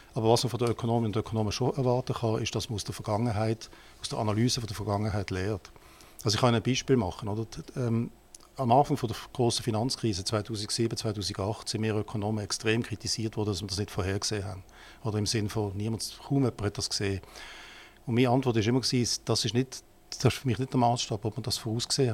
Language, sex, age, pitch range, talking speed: German, male, 50-69, 105-120 Hz, 215 wpm